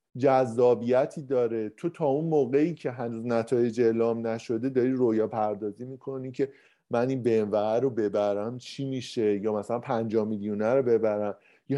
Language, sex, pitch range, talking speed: Persian, male, 110-145 Hz, 150 wpm